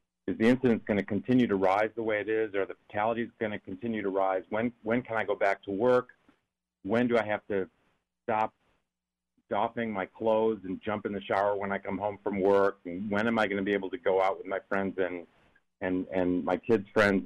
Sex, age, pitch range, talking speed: male, 40-59, 90-110 Hz, 235 wpm